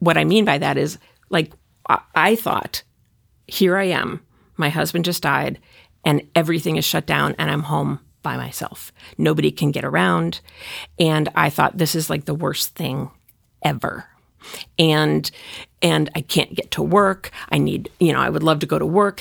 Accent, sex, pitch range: American, female, 150-180 Hz